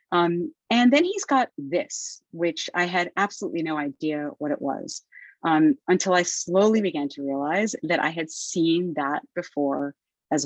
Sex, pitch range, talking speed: female, 150-235 Hz, 165 wpm